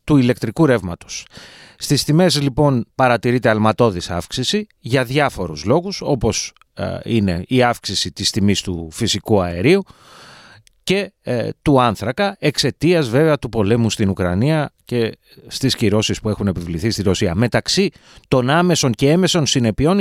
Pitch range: 110-170 Hz